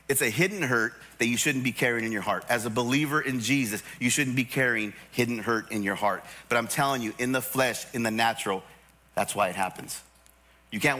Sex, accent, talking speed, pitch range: male, American, 230 wpm, 125-185 Hz